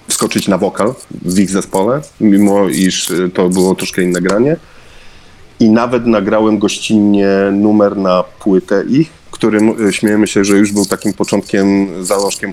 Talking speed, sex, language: 145 wpm, male, Polish